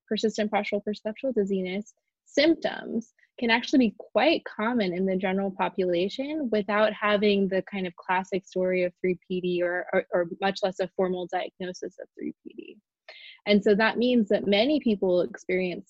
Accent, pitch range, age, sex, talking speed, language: American, 190-235 Hz, 20-39, female, 155 wpm, English